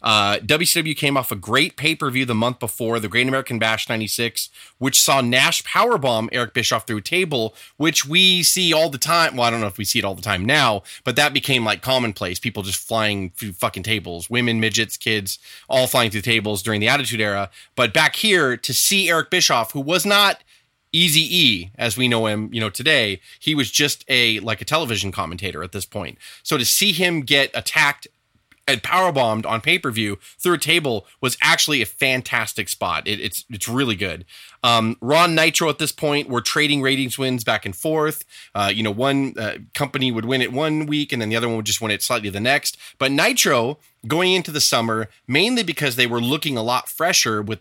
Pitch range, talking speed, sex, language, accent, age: 110-145 Hz, 215 wpm, male, English, American, 30-49